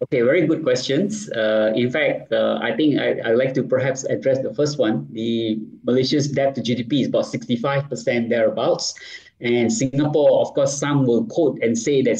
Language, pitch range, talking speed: English, 120-150 Hz, 185 wpm